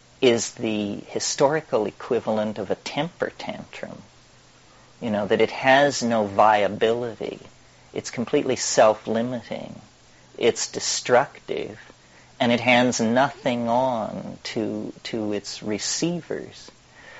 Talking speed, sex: 100 wpm, male